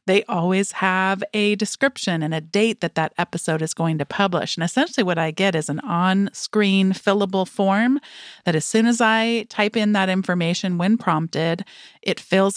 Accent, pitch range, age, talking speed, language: American, 175-210 Hz, 40-59, 180 wpm, English